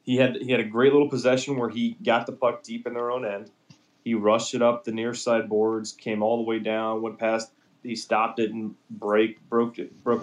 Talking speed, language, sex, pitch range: 240 wpm, English, male, 105-120 Hz